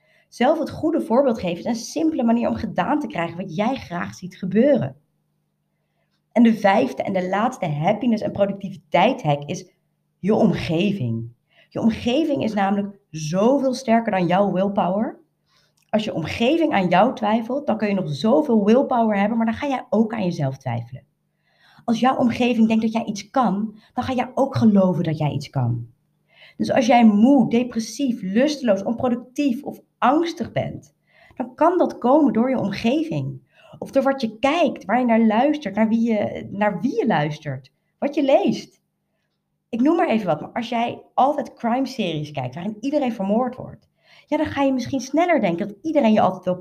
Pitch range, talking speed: 185-260 Hz, 180 wpm